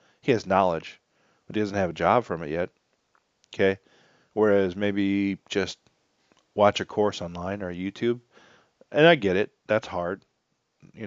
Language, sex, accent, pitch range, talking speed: English, male, American, 90-100 Hz, 155 wpm